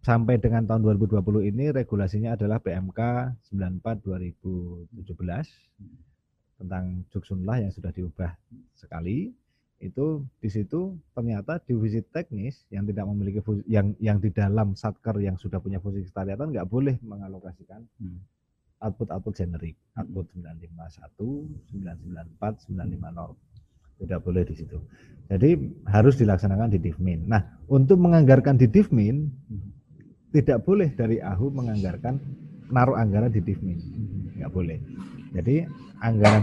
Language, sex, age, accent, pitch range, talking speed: Indonesian, male, 30-49, native, 95-130 Hz, 115 wpm